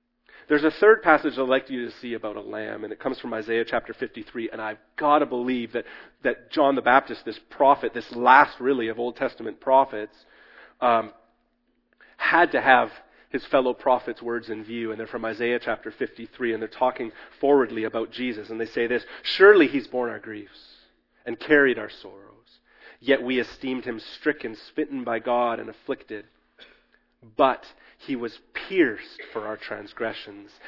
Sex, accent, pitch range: male, American, 120-165 Hz